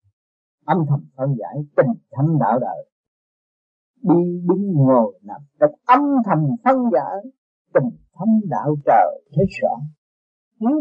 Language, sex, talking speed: Vietnamese, male, 135 wpm